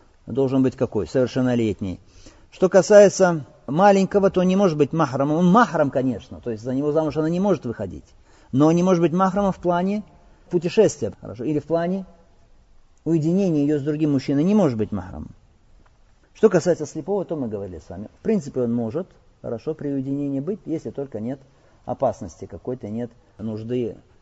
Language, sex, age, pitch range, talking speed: Russian, male, 40-59, 105-140 Hz, 170 wpm